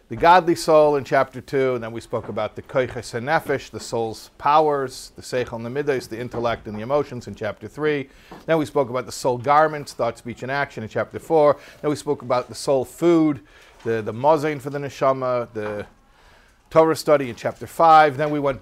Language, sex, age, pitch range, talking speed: English, male, 50-69, 115-150 Hz, 215 wpm